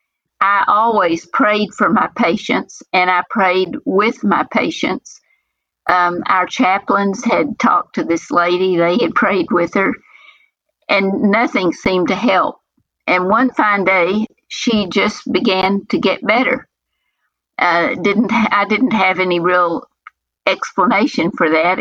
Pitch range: 180-235 Hz